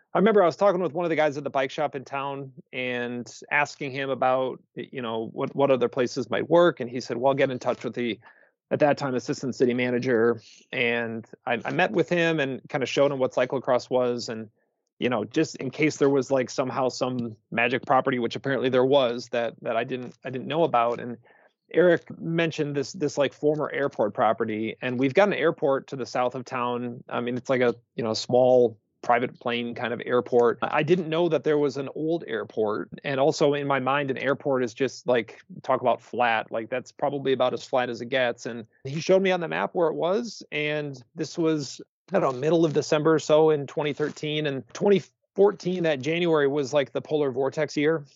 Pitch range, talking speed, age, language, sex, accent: 125-150 Hz, 225 wpm, 30-49, English, male, American